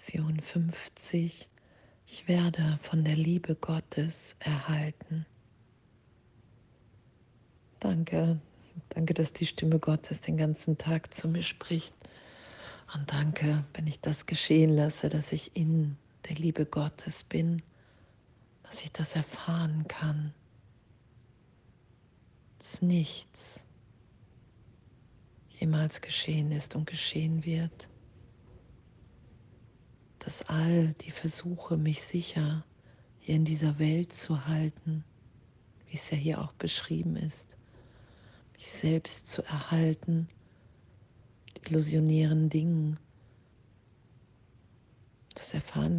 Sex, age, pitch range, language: female, 40-59, 115-160 Hz, German